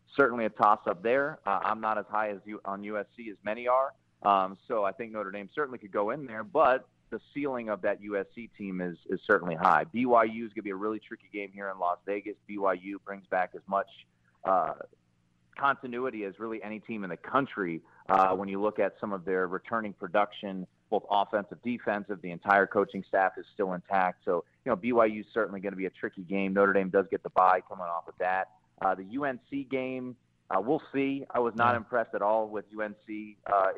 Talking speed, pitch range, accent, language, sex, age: 220 wpm, 95-120 Hz, American, English, male, 30-49